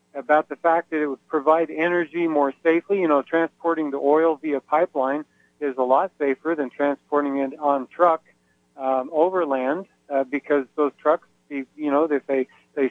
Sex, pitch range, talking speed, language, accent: male, 140-170 Hz, 170 wpm, English, American